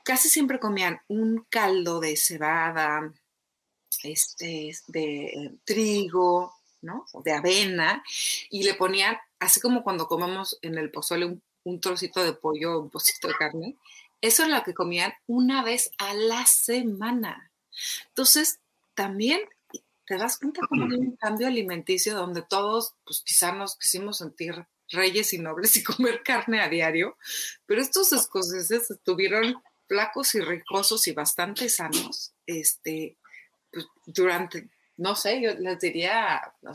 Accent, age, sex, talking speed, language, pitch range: Mexican, 30-49, female, 140 wpm, Spanish, 165-235 Hz